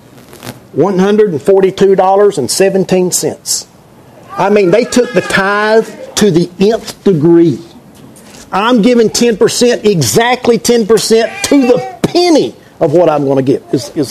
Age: 50-69